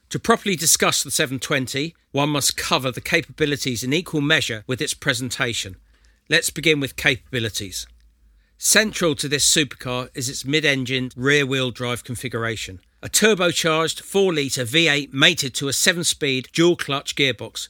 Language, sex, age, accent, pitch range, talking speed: English, male, 50-69, British, 120-155 Hz, 135 wpm